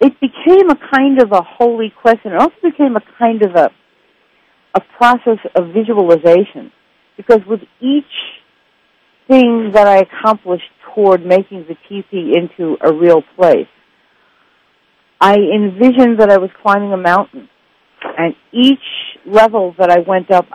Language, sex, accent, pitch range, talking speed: English, female, American, 175-225 Hz, 145 wpm